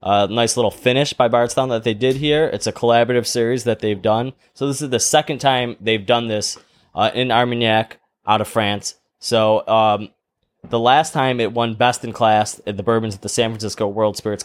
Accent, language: American, English